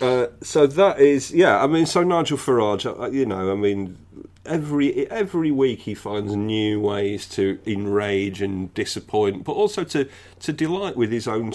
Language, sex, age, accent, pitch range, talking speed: English, male, 40-59, British, 95-110 Hz, 170 wpm